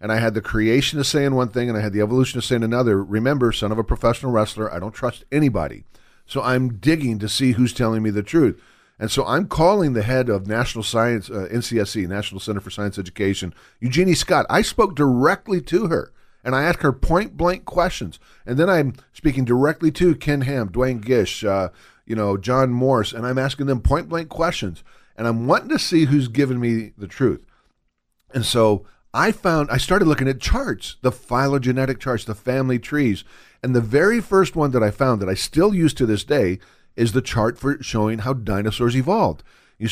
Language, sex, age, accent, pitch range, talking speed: English, male, 50-69, American, 110-140 Hz, 205 wpm